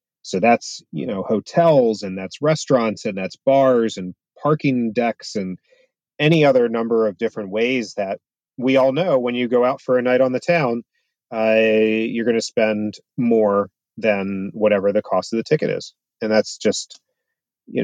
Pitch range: 105-135 Hz